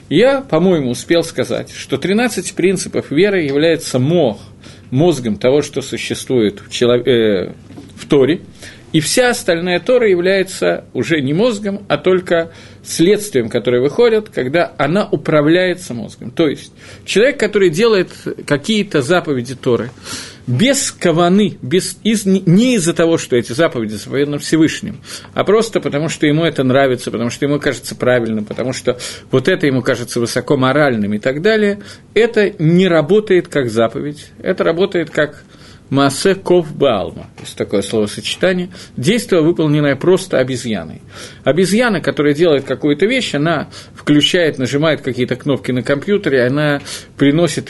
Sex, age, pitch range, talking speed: male, 50-69, 130-185 Hz, 135 wpm